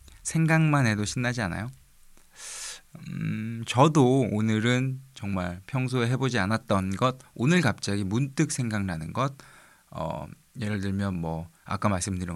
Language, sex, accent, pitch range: Korean, male, native, 95-135 Hz